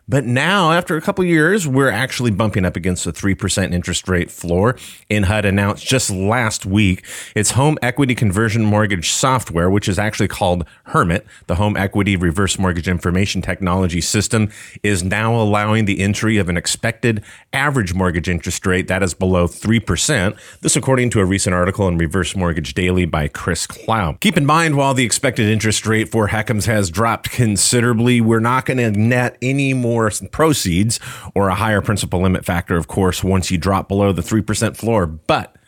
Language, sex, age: English, male, 30-49